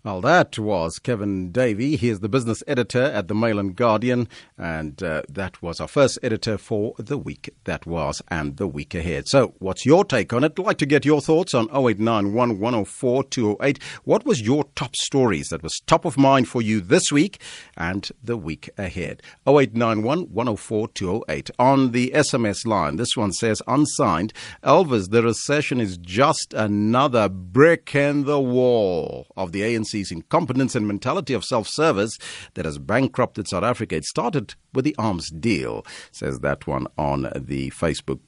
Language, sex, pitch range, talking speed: English, male, 100-135 Hz, 175 wpm